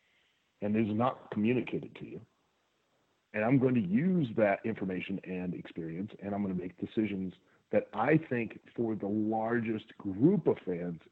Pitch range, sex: 110-155 Hz, male